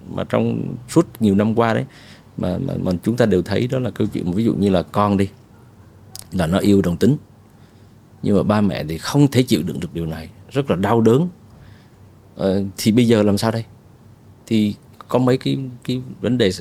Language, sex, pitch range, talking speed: Vietnamese, male, 100-125 Hz, 205 wpm